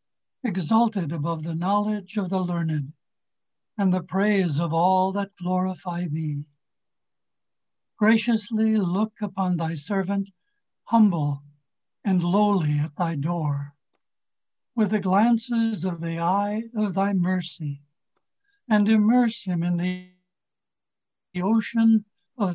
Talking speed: 110 wpm